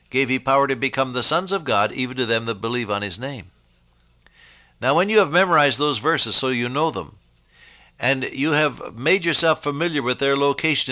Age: 60-79